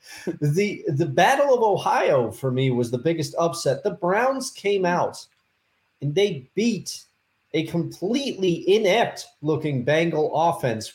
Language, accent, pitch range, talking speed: English, American, 140-200 Hz, 125 wpm